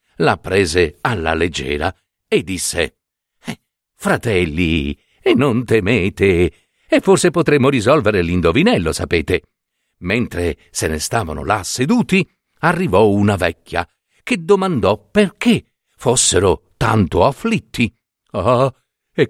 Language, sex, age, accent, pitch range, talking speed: Italian, male, 60-79, native, 100-165 Hz, 105 wpm